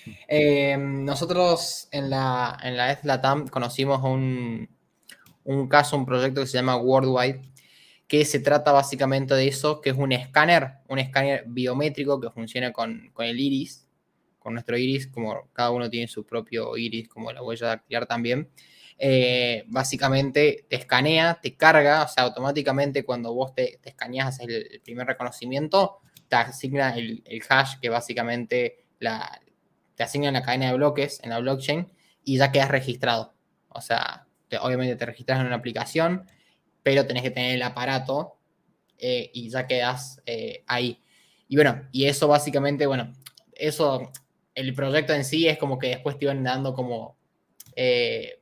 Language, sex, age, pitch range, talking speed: Spanish, male, 20-39, 125-145 Hz, 160 wpm